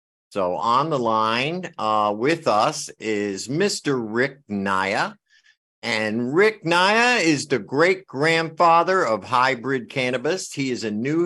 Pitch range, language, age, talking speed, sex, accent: 95-125 Hz, English, 50-69, 130 wpm, male, American